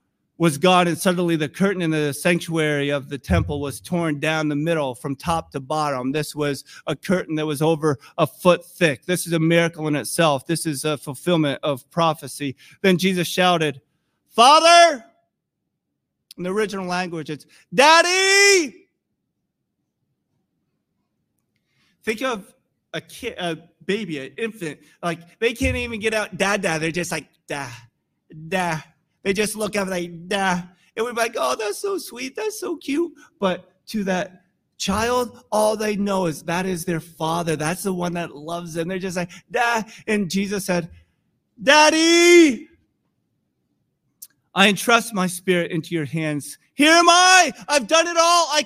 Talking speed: 160 wpm